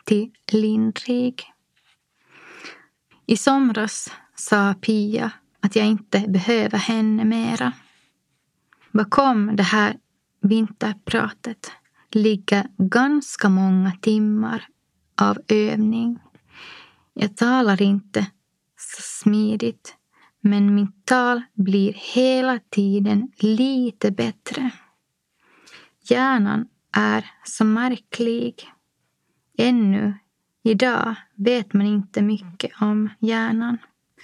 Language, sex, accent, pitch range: Swedish, female, native, 205-235 Hz